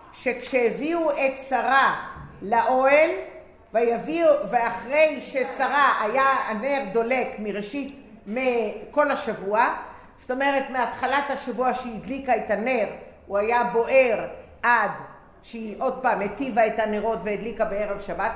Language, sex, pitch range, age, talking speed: English, female, 200-265 Hz, 50-69, 105 wpm